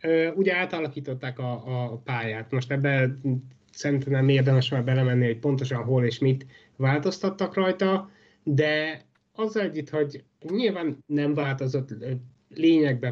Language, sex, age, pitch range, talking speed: Hungarian, male, 30-49, 130-165 Hz, 130 wpm